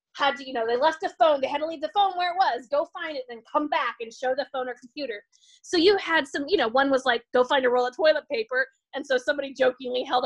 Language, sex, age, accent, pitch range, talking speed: English, female, 20-39, American, 235-320 Hz, 290 wpm